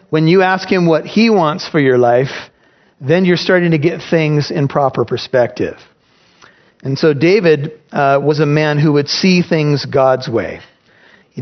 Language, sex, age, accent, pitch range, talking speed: English, male, 40-59, American, 145-180 Hz, 175 wpm